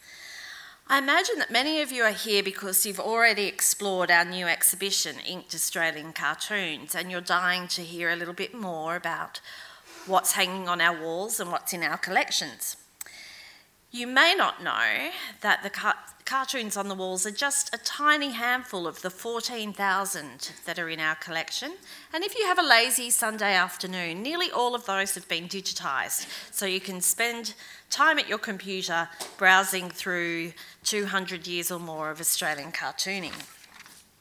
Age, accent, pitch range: 40-59, Australian, 170-230 Hz